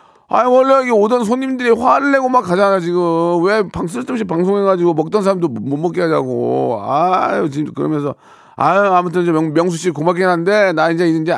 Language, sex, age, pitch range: Korean, male, 40-59, 120-180 Hz